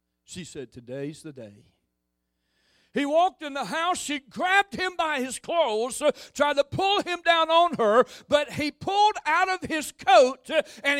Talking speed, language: 170 wpm, English